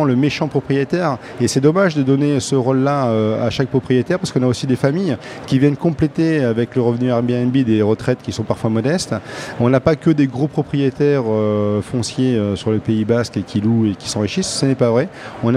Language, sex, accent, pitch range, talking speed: French, male, French, 125-160 Hz, 225 wpm